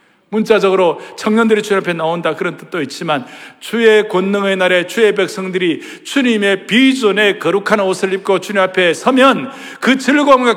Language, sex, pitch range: Korean, male, 135-225 Hz